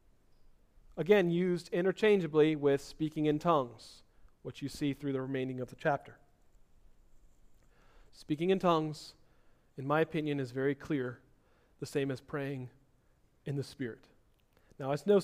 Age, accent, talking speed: 40-59, American, 140 wpm